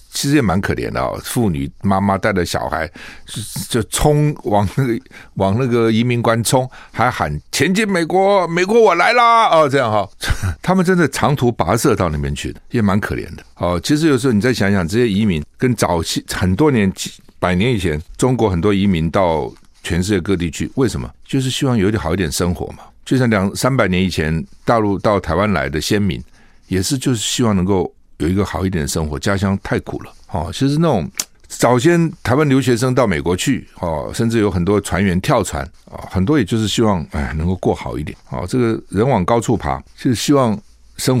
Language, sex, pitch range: Chinese, male, 90-125 Hz